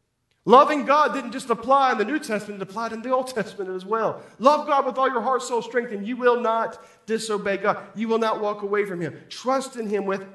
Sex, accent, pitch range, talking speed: male, American, 160-220 Hz, 245 wpm